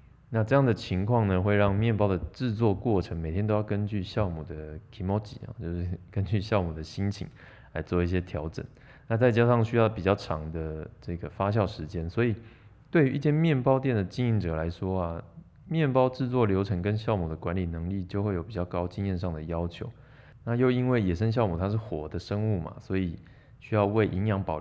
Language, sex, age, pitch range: Chinese, male, 20-39, 90-115 Hz